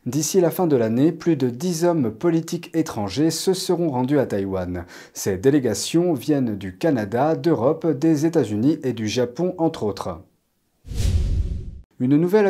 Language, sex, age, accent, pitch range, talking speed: French, male, 40-59, French, 115-165 Hz, 150 wpm